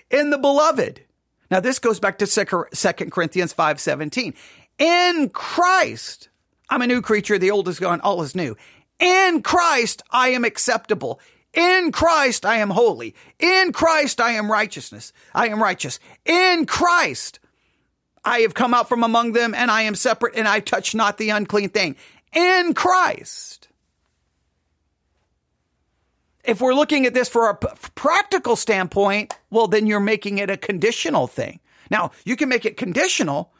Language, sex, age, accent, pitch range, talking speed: English, male, 40-59, American, 175-255 Hz, 160 wpm